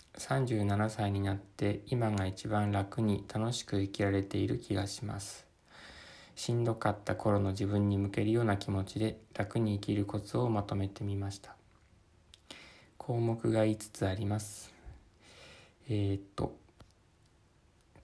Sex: male